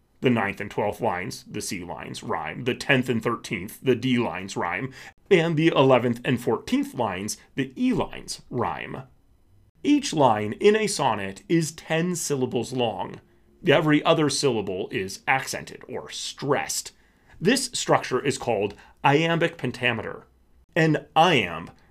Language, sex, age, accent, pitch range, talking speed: English, male, 30-49, American, 120-160 Hz, 140 wpm